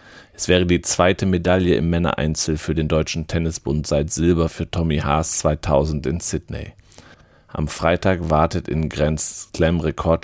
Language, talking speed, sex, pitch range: German, 150 wpm, male, 75-90 Hz